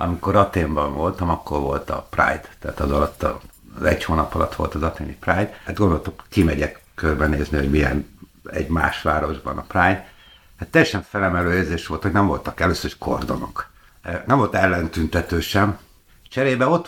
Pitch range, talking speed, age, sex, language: 85-105 Hz, 165 wpm, 60-79, male, Hungarian